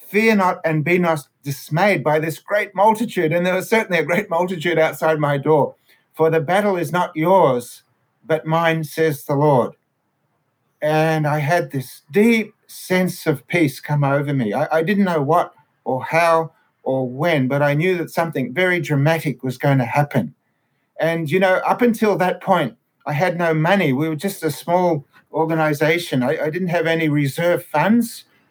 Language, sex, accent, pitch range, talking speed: English, male, Australian, 150-190 Hz, 180 wpm